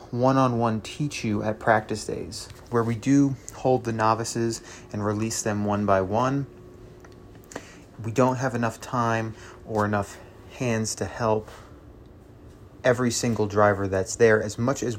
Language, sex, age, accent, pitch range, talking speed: English, male, 30-49, American, 100-115 Hz, 145 wpm